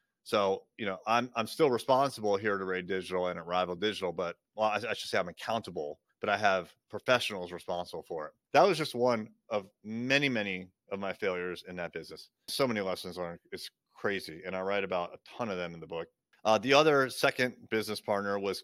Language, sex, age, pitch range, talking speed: English, male, 30-49, 100-125 Hz, 215 wpm